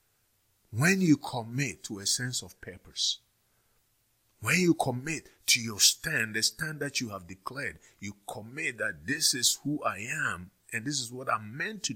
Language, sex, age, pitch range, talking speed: English, male, 50-69, 95-125 Hz, 175 wpm